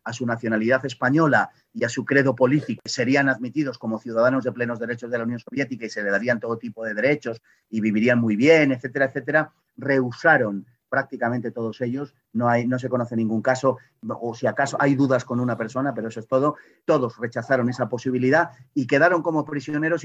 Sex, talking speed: male, 195 wpm